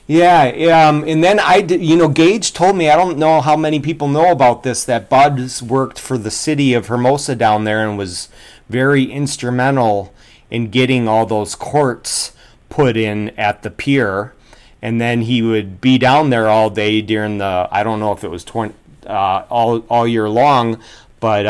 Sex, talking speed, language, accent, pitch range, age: male, 195 wpm, English, American, 100-120 Hz, 30-49